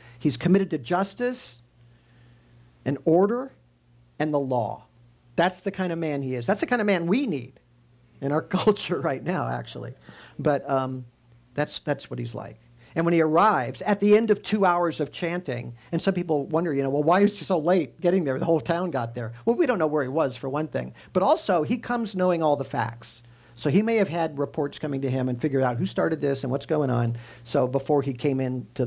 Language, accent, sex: English, American, male